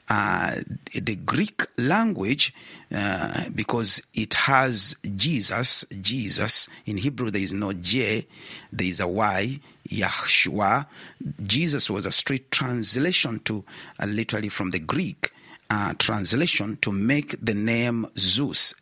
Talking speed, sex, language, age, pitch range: 125 wpm, male, English, 50-69, 100-135 Hz